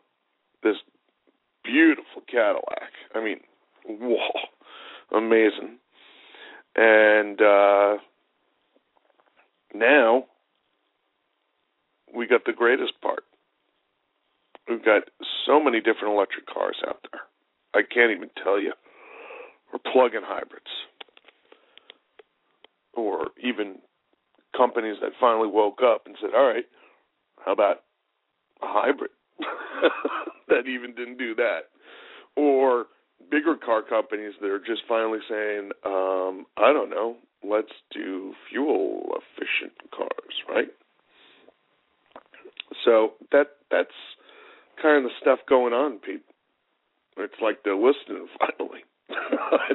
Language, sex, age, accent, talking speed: English, male, 50-69, American, 105 wpm